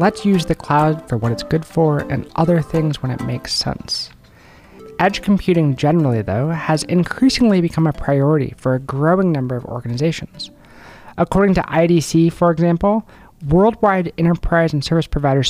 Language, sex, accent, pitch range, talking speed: English, male, American, 135-175 Hz, 160 wpm